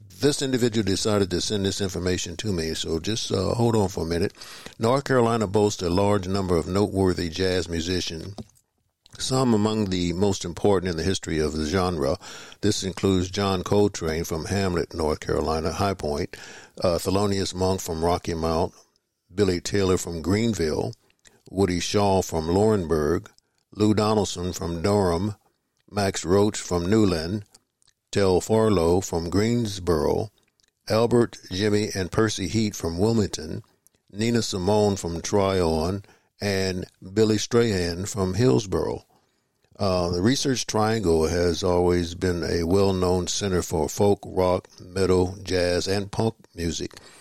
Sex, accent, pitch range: male, American, 90-105 Hz